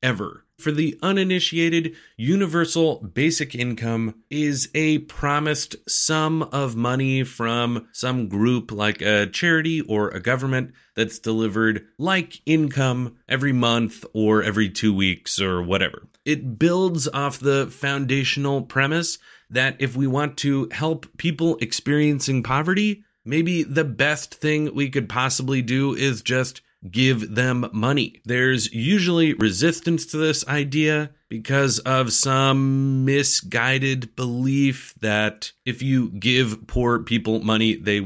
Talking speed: 130 wpm